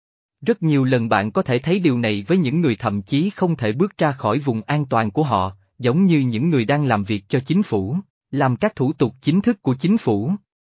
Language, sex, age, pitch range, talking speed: Vietnamese, male, 20-39, 110-165 Hz, 240 wpm